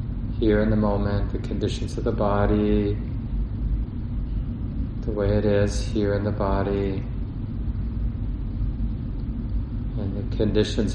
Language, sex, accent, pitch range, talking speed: English, male, American, 105-115 Hz, 110 wpm